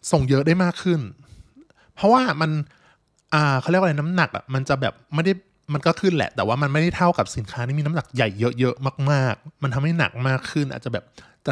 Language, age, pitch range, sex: Thai, 20-39, 125-165 Hz, male